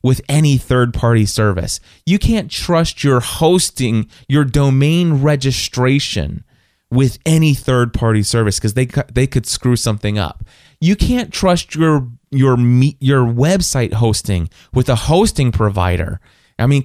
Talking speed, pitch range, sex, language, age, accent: 140 wpm, 120-160 Hz, male, English, 30-49, American